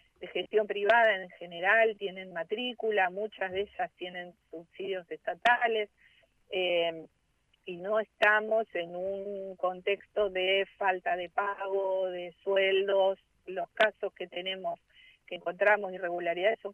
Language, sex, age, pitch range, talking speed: Spanish, female, 40-59, 175-210 Hz, 120 wpm